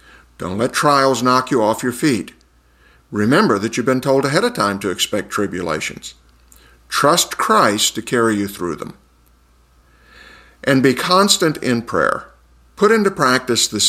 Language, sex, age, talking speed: English, male, 50-69, 150 wpm